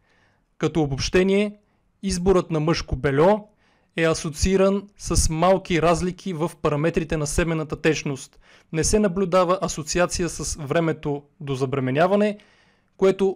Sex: male